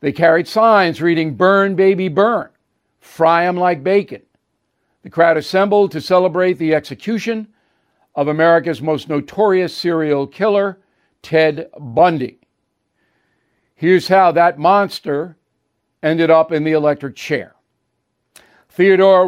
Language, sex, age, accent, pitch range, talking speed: English, male, 60-79, American, 155-180 Hz, 115 wpm